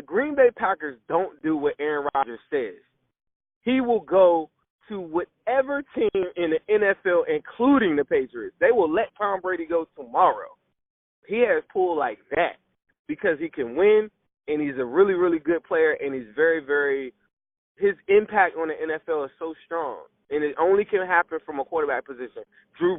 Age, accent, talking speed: 20-39, American, 165 wpm